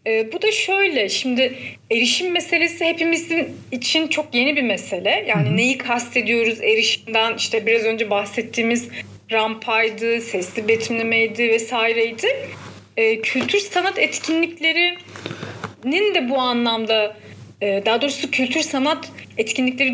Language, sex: Turkish, female